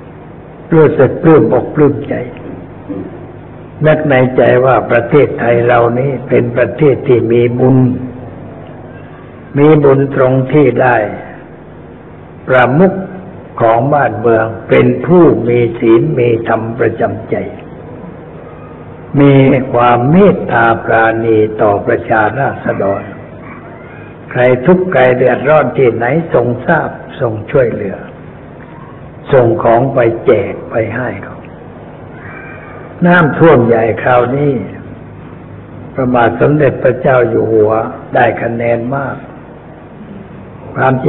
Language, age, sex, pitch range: Thai, 60-79, male, 115-145 Hz